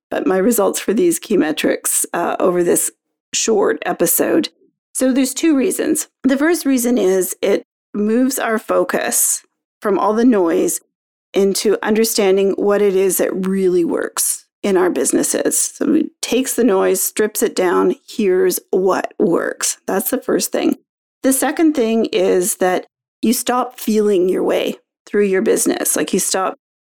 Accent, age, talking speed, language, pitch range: American, 40-59, 155 wpm, English, 195-295 Hz